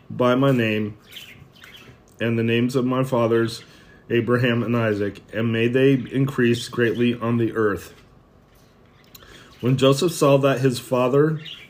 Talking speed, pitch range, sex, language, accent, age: 135 wpm, 115-135 Hz, male, English, American, 30-49